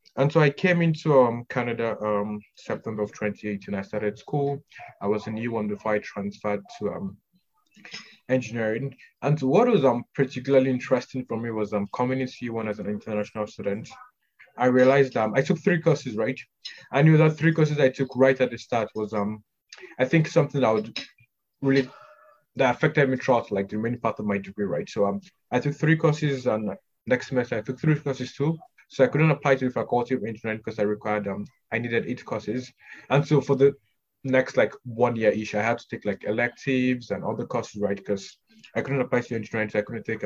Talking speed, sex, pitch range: 205 wpm, male, 105-140 Hz